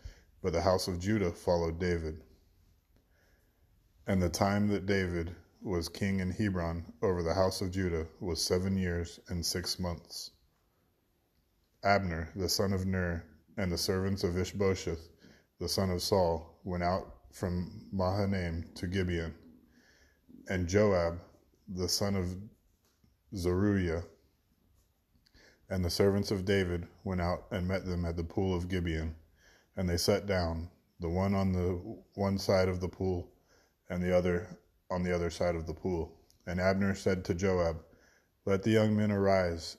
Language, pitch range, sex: English, 85-95 Hz, male